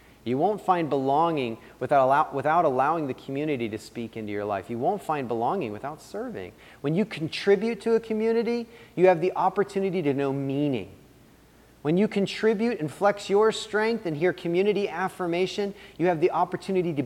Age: 30-49